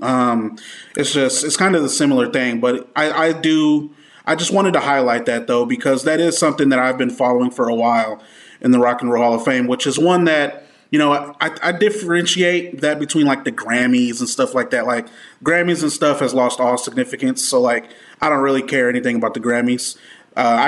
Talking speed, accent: 225 wpm, American